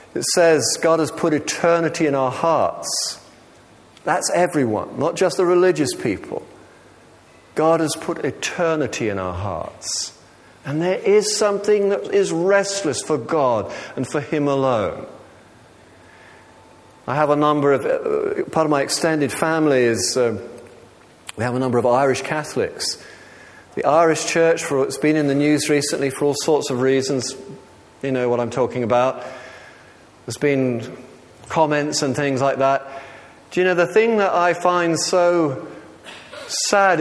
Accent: British